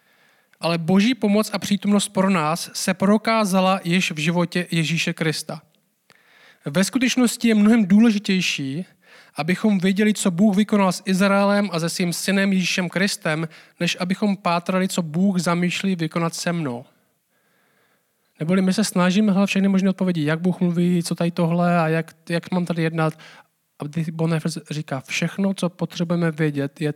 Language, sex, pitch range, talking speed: Czech, male, 170-210 Hz, 155 wpm